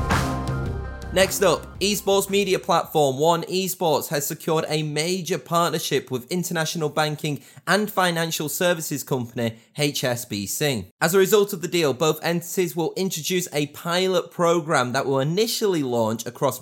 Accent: British